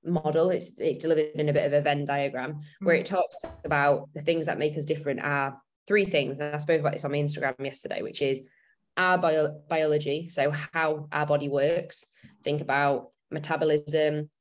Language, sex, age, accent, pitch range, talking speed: English, female, 10-29, British, 145-165 Hz, 185 wpm